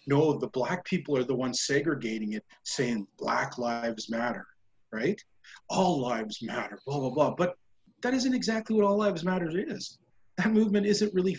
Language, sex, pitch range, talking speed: English, male, 130-190 Hz, 175 wpm